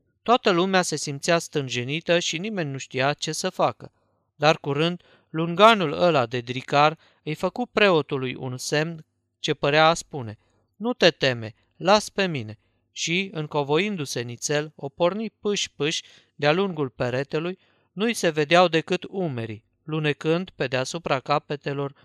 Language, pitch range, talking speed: Romanian, 130-170 Hz, 140 wpm